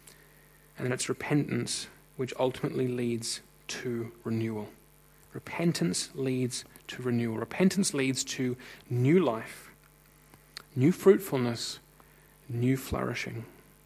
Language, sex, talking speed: English, male, 90 wpm